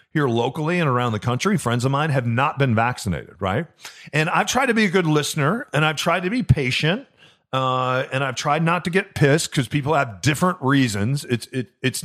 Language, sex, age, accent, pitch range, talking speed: English, male, 40-59, American, 120-155 Hz, 220 wpm